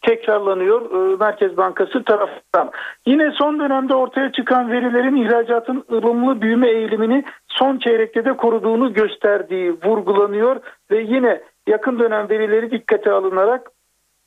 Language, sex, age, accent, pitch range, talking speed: Turkish, male, 50-69, native, 205-255 Hz, 115 wpm